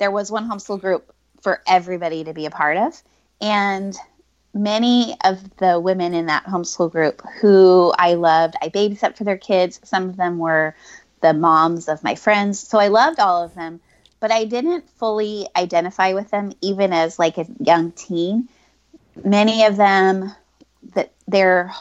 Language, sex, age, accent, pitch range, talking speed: English, female, 20-39, American, 170-205 Hz, 170 wpm